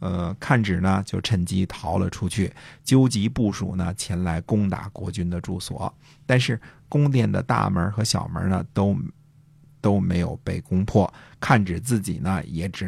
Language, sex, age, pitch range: Chinese, male, 50-69, 95-130 Hz